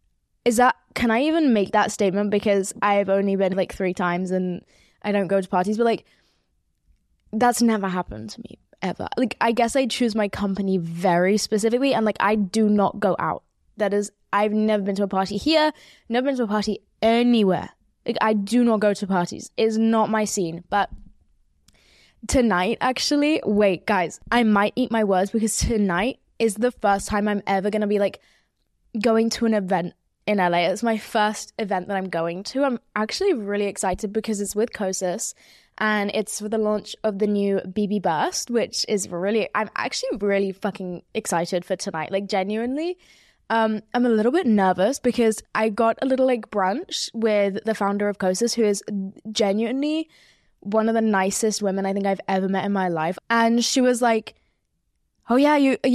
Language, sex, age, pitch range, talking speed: English, female, 10-29, 195-230 Hz, 190 wpm